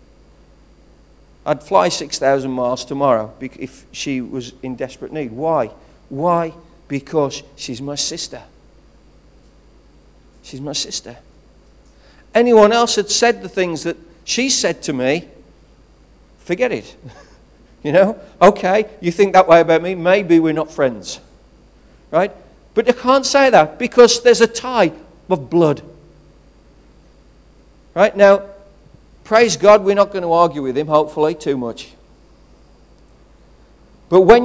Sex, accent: male, British